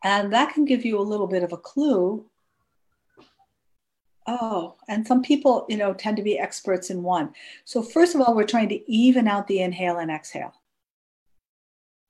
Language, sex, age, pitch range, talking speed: English, female, 50-69, 190-260 Hz, 180 wpm